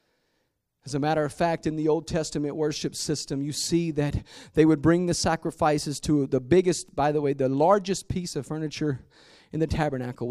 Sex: male